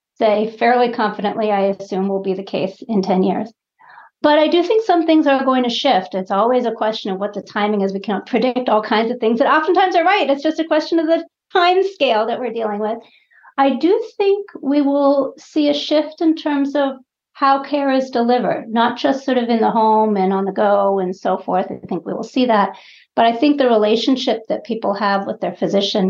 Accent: American